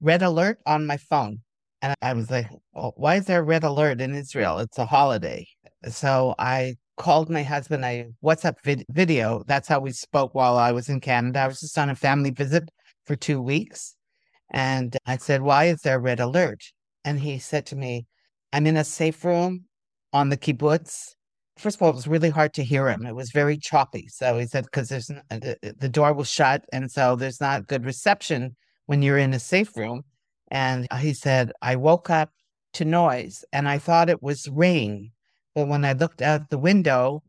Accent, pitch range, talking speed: American, 130-160 Hz, 200 wpm